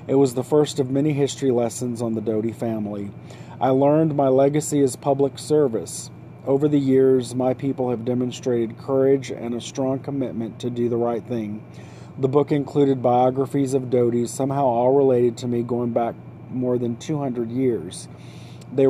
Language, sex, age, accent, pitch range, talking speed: English, male, 40-59, American, 115-130 Hz, 170 wpm